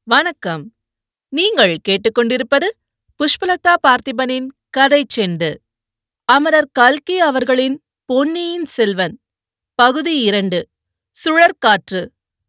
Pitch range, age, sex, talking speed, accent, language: 200-270 Hz, 30-49, female, 70 wpm, native, Tamil